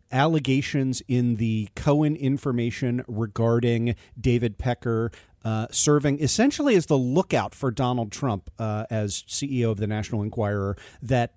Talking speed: 130 wpm